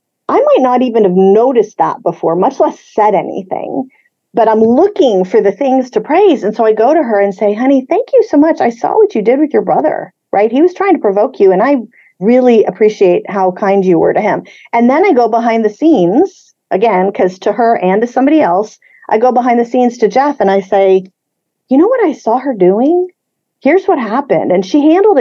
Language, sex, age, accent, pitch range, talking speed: English, female, 40-59, American, 200-300 Hz, 230 wpm